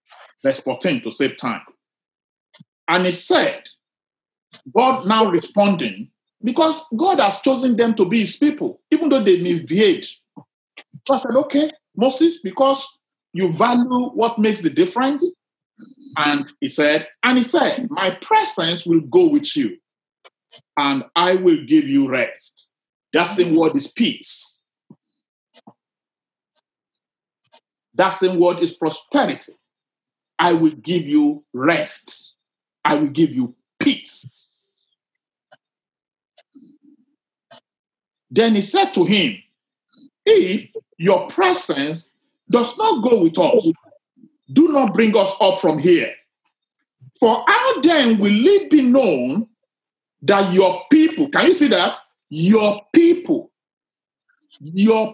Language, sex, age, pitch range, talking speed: English, male, 50-69, 200-310 Hz, 120 wpm